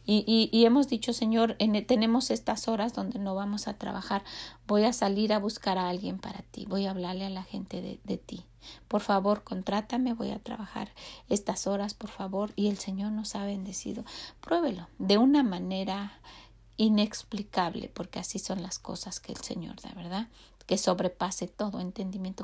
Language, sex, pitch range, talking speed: Spanish, female, 185-220 Hz, 180 wpm